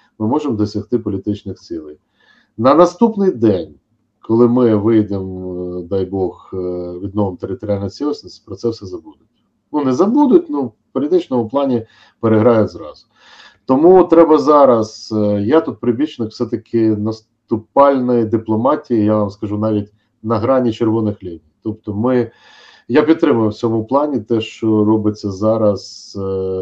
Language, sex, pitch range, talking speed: Ukrainian, male, 105-125 Hz, 130 wpm